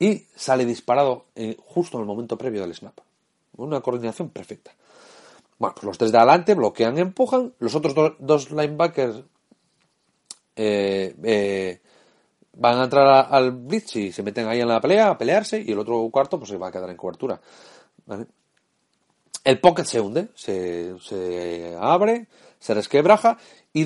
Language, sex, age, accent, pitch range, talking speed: Spanish, male, 40-59, Spanish, 115-180 Hz, 165 wpm